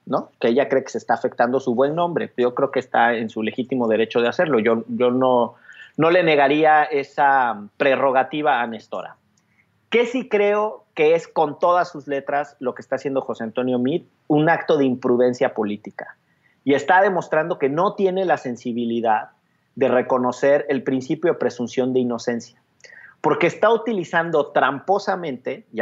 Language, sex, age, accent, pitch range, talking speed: Spanish, male, 40-59, Mexican, 125-180 Hz, 170 wpm